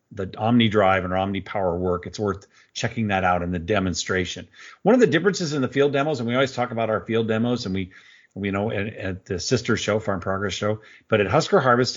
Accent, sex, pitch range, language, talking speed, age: American, male, 95-120 Hz, English, 235 wpm, 50-69